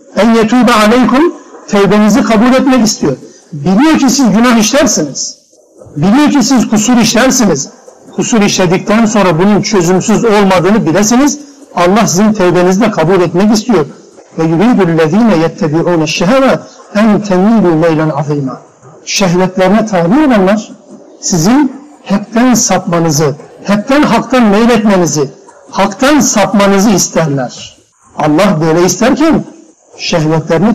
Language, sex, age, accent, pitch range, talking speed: Turkish, male, 60-79, native, 185-240 Hz, 100 wpm